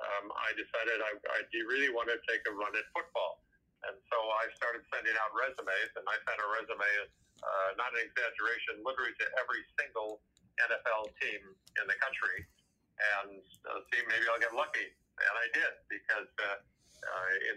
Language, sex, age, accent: English, male, 50-69, American